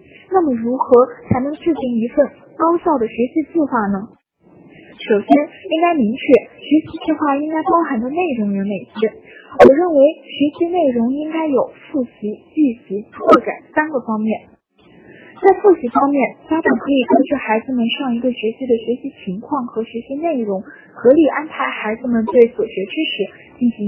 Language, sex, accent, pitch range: Chinese, female, native, 225-315 Hz